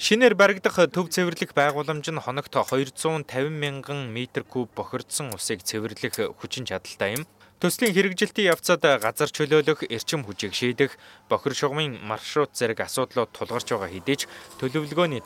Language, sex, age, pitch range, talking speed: English, male, 20-39, 105-145 Hz, 130 wpm